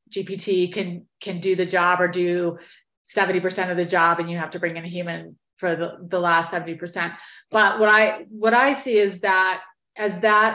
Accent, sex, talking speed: American, female, 200 wpm